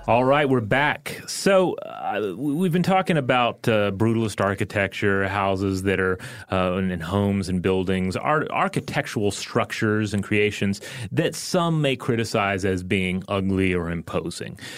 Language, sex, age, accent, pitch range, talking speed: English, male, 30-49, American, 100-130 Hz, 140 wpm